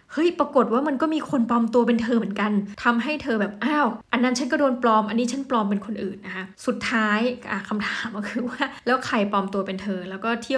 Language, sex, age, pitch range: Thai, female, 20-39, 200-240 Hz